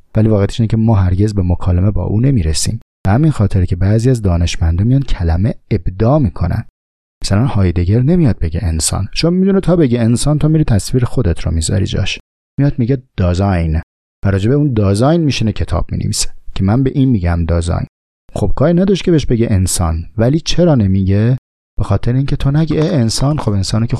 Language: Persian